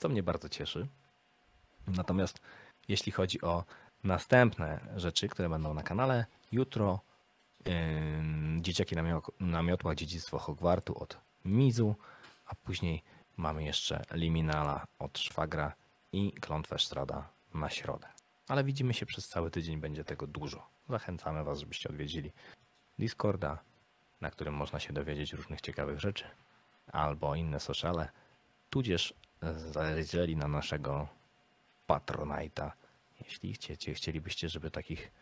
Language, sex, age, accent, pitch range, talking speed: Polish, male, 30-49, native, 75-95 Hz, 120 wpm